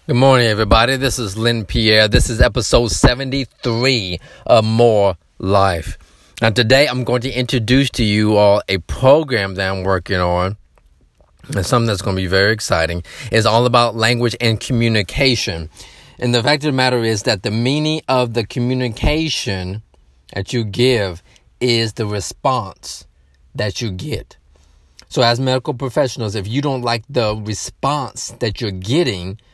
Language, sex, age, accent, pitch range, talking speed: English, male, 30-49, American, 100-125 Hz, 160 wpm